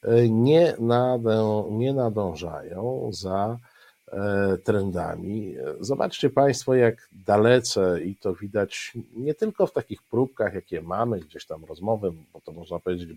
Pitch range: 95-120 Hz